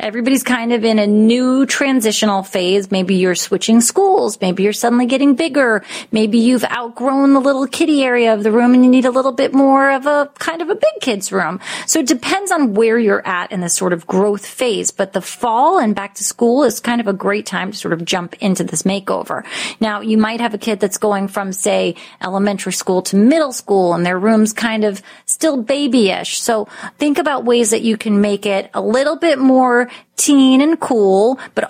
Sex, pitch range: female, 195-250 Hz